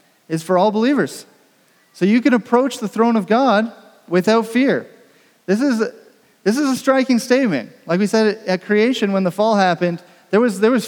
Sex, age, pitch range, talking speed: male, 30-49, 170-215 Hz, 190 wpm